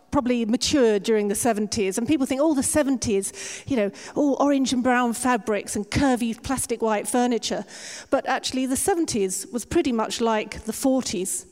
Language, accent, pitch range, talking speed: English, British, 205-245 Hz, 175 wpm